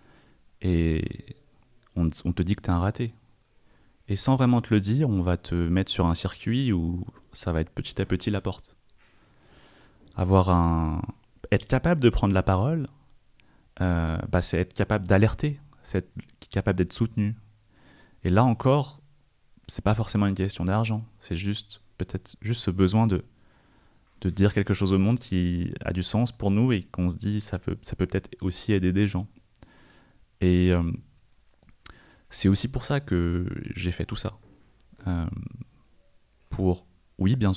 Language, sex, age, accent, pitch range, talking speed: French, male, 30-49, French, 90-115 Hz, 170 wpm